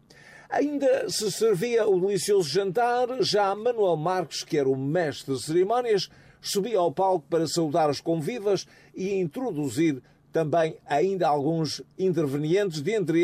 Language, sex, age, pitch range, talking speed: Portuguese, male, 50-69, 145-190 Hz, 130 wpm